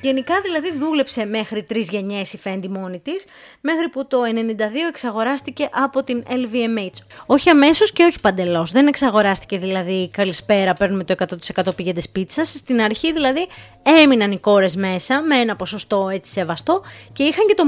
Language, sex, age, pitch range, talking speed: Greek, female, 20-39, 210-300 Hz, 165 wpm